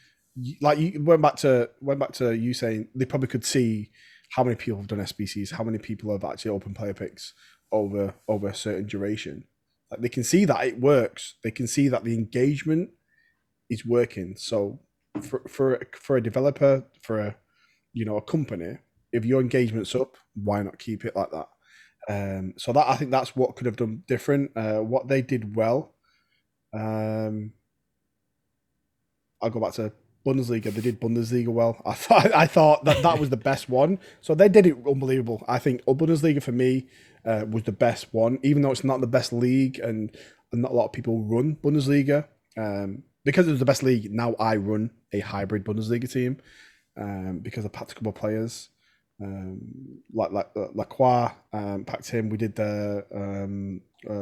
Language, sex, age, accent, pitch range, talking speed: English, male, 20-39, British, 105-130 Hz, 190 wpm